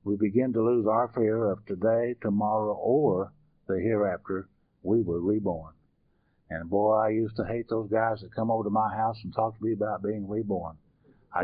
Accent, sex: American, male